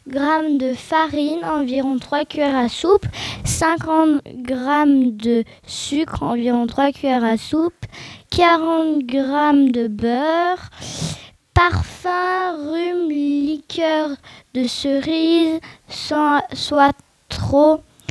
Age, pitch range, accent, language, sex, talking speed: 20-39, 260-315 Hz, French, French, female, 95 wpm